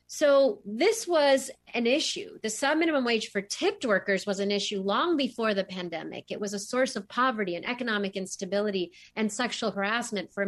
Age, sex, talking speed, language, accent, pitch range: 40-59, female, 185 wpm, English, American, 200-270 Hz